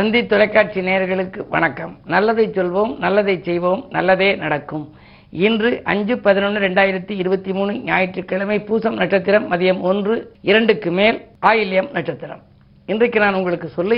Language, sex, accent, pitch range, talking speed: Tamil, female, native, 175-210 Hz, 125 wpm